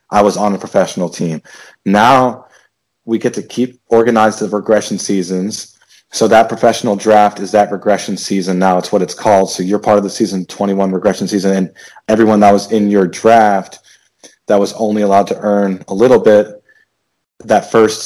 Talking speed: 185 wpm